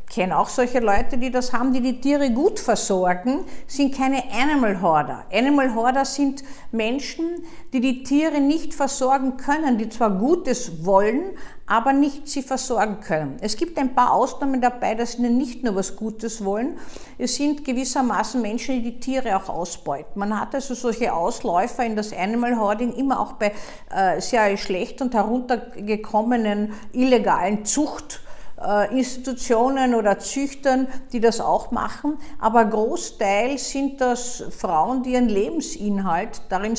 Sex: female